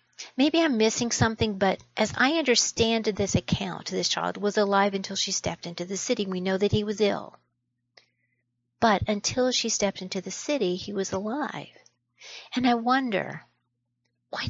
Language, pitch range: English, 175-240 Hz